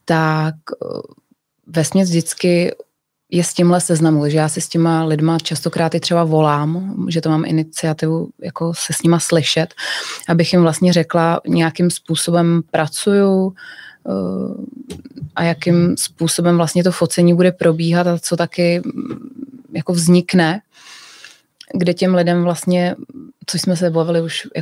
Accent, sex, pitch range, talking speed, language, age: native, female, 165-180 Hz, 135 wpm, Czech, 20-39